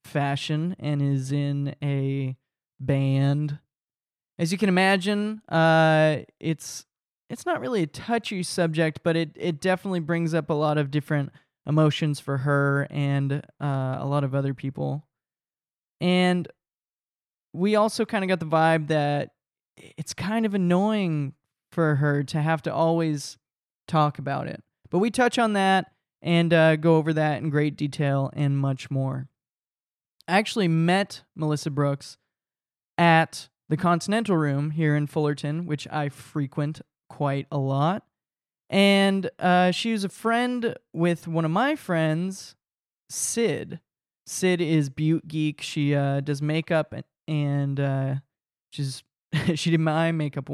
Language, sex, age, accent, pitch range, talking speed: English, male, 20-39, American, 140-175 Hz, 145 wpm